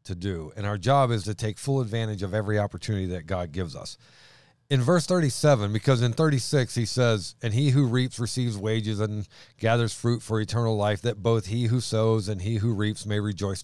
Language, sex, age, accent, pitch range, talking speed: English, male, 40-59, American, 110-140 Hz, 210 wpm